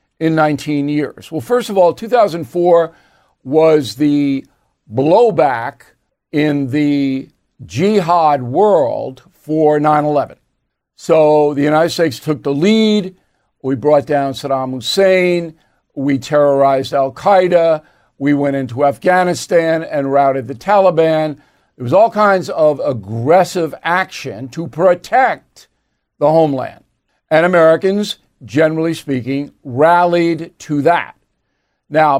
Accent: American